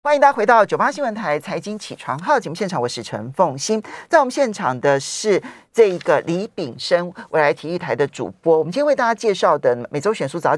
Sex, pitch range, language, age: male, 145-210 Hz, Chinese, 40-59